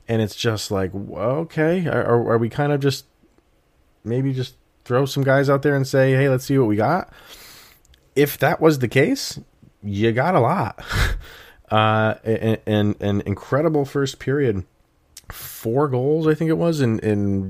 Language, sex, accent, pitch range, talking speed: English, male, American, 90-120 Hz, 170 wpm